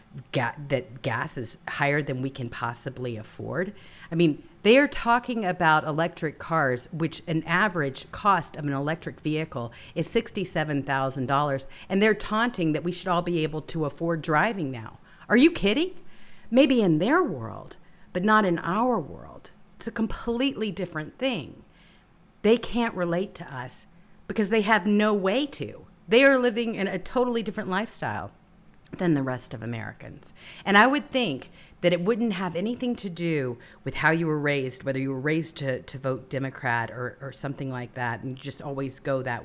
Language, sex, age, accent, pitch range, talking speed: English, female, 50-69, American, 135-195 Hz, 175 wpm